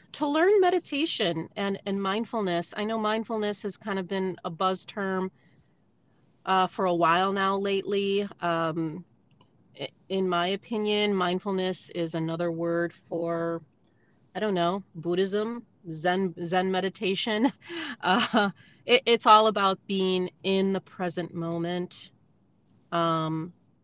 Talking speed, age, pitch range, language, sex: 125 wpm, 30-49, 170-205 Hz, English, female